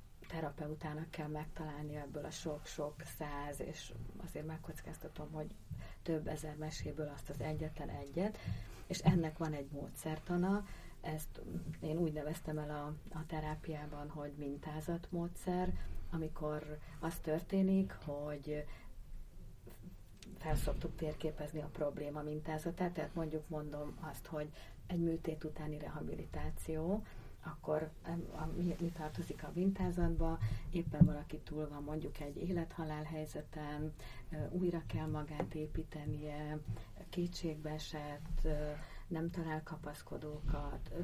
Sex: female